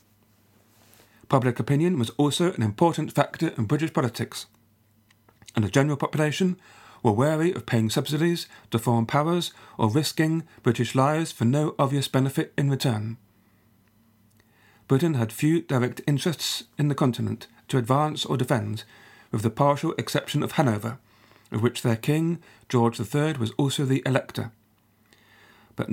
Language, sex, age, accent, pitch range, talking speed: English, male, 40-59, British, 115-150 Hz, 140 wpm